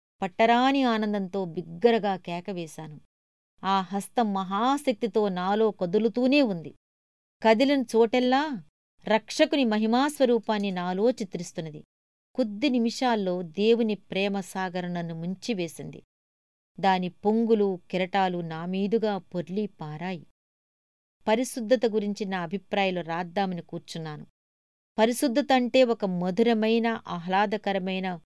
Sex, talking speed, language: female, 80 wpm, Telugu